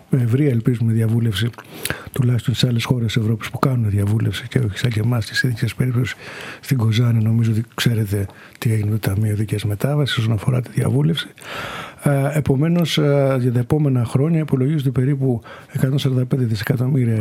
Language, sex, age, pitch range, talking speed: Greek, male, 50-69, 120-140 Hz, 145 wpm